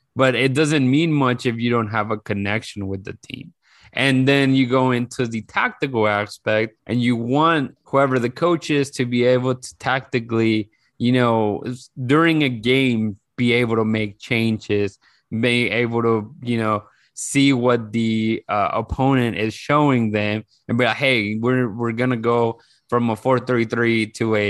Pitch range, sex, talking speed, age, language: 115-140 Hz, male, 170 wpm, 20-39, English